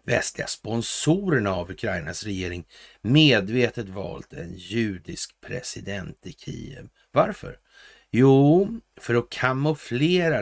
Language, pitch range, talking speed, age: Swedish, 100-130 Hz, 100 wpm, 60-79